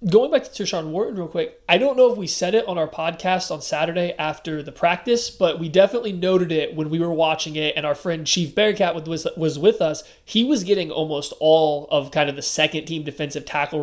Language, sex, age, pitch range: English, male, 20-39, 150-185 Hz